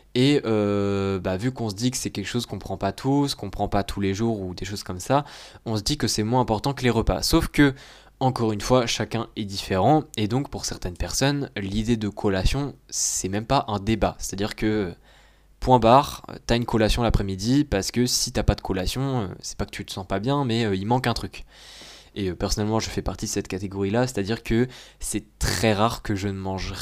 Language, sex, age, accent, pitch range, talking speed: French, male, 20-39, French, 100-120 Hz, 235 wpm